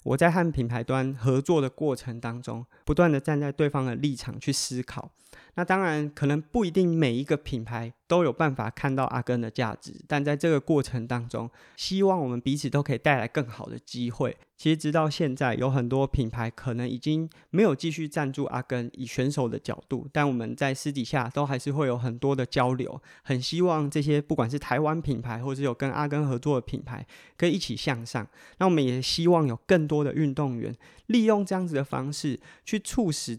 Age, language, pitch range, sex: 20-39, Chinese, 125-155 Hz, male